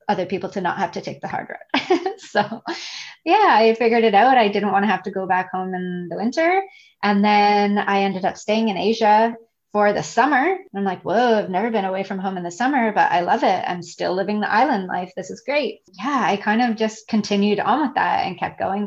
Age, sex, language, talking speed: 20-39, female, English, 240 wpm